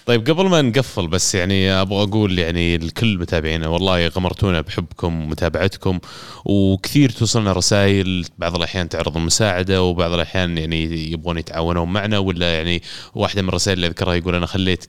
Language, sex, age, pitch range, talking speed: Arabic, male, 20-39, 90-105 Hz, 155 wpm